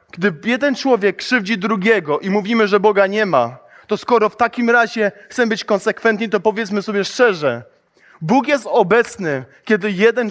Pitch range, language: 150-210 Hz, Polish